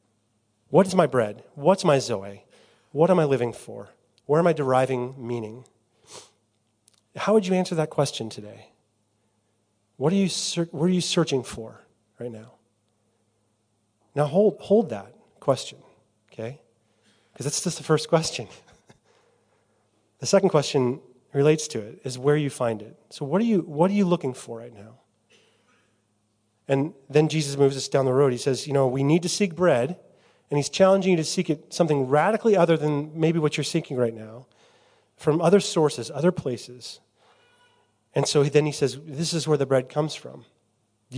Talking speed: 175 wpm